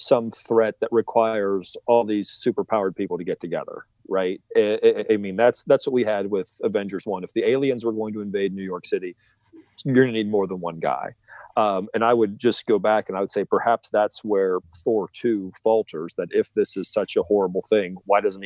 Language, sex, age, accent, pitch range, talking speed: English, male, 40-59, American, 95-120 Hz, 215 wpm